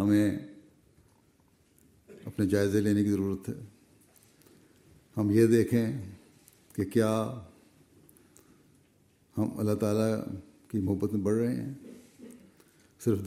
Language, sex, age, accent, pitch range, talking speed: English, male, 60-79, Indian, 105-120 Hz, 95 wpm